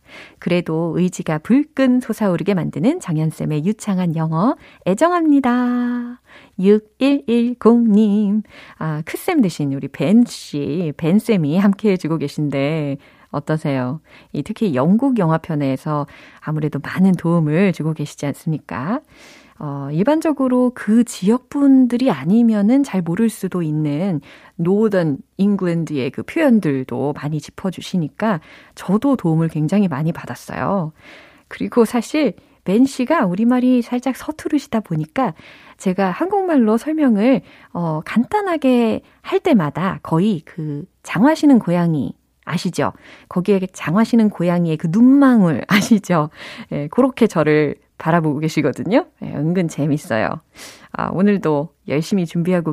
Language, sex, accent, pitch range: Korean, female, native, 155-240 Hz